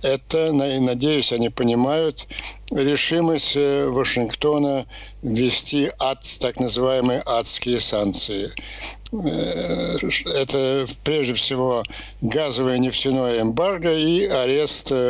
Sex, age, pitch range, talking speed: male, 60-79, 120-145 Hz, 80 wpm